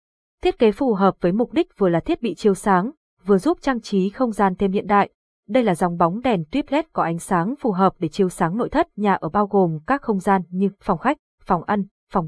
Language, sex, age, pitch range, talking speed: Vietnamese, female, 20-39, 185-240 Hz, 255 wpm